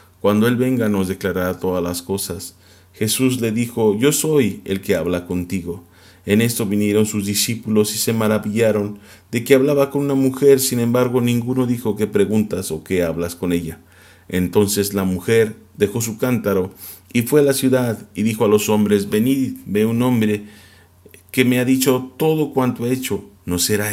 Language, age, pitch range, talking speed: Spanish, 40-59, 95-125 Hz, 180 wpm